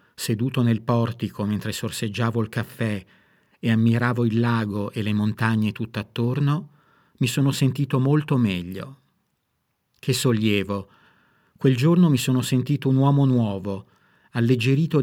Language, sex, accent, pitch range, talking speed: Italian, male, native, 110-140 Hz, 125 wpm